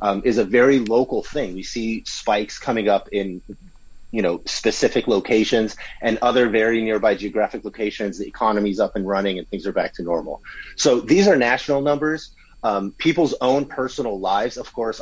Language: English